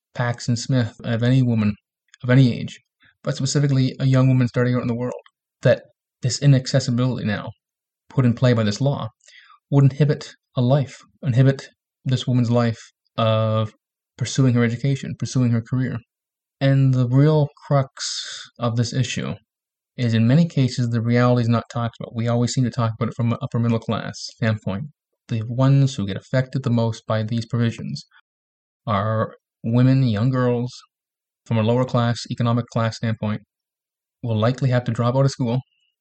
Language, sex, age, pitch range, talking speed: English, male, 20-39, 115-135 Hz, 170 wpm